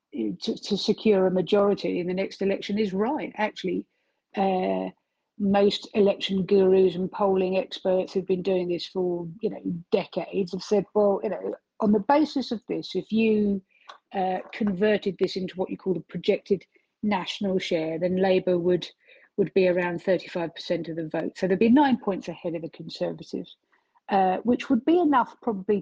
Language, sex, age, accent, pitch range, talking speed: English, female, 50-69, British, 180-230 Hz, 180 wpm